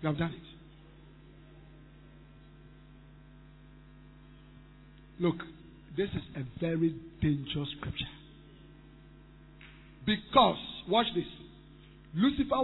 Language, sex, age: English, male, 50-69